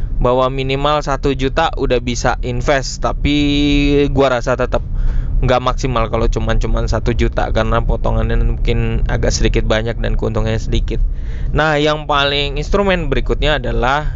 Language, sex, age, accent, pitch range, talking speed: Indonesian, male, 20-39, native, 115-145 Hz, 135 wpm